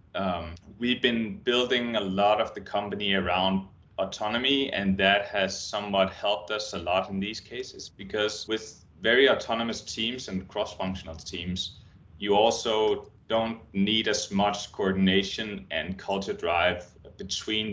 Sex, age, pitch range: male, 30-49, 95-110 Hz